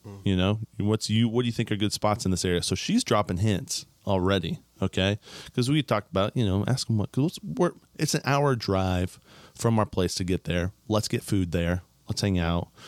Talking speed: 225 wpm